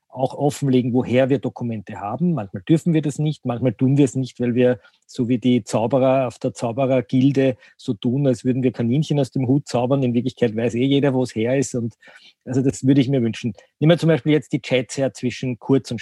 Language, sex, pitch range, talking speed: German, male, 125-150 Hz, 230 wpm